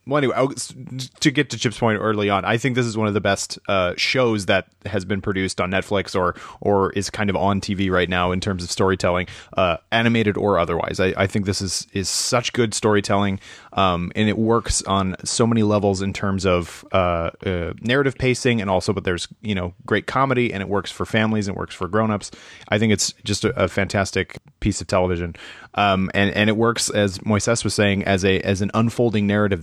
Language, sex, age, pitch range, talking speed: English, male, 30-49, 95-115 Hz, 225 wpm